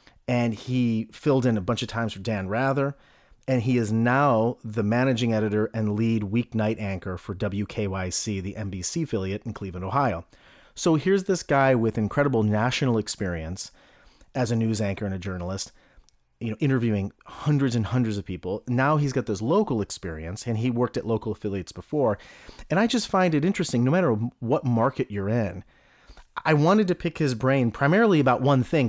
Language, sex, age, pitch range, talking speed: English, male, 30-49, 105-140 Hz, 185 wpm